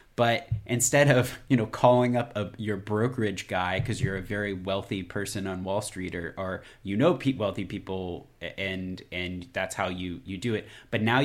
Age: 30-49